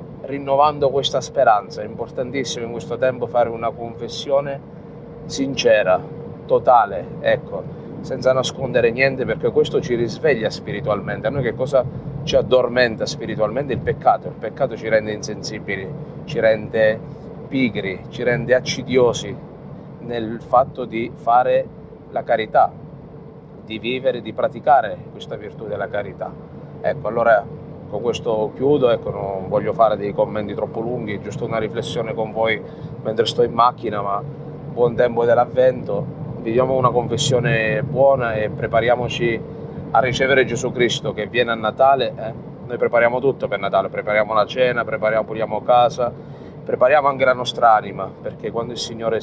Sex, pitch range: male, 115-145 Hz